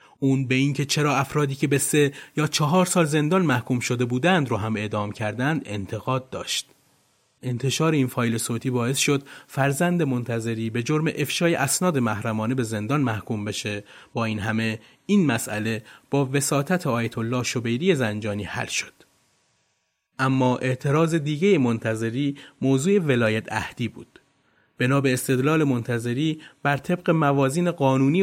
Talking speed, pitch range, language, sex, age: 140 wpm, 115-145 Hz, Persian, male, 30-49